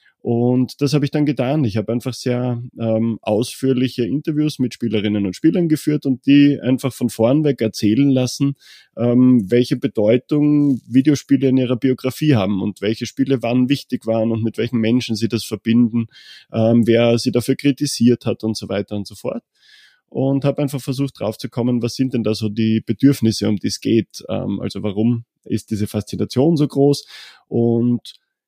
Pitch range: 110-135 Hz